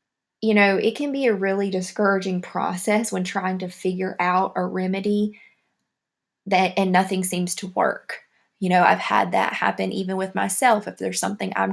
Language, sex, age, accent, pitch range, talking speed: English, female, 20-39, American, 185-210 Hz, 180 wpm